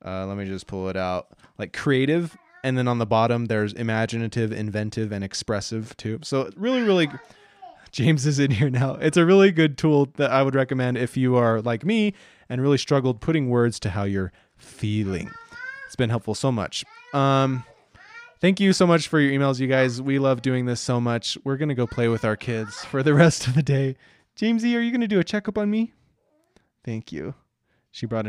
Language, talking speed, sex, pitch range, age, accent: English, 210 wpm, male, 115-150 Hz, 20-39, American